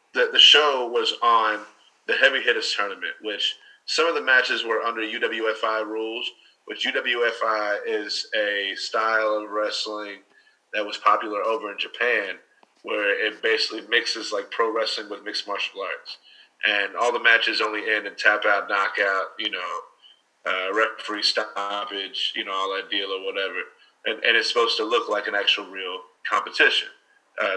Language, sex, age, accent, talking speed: English, male, 30-49, American, 165 wpm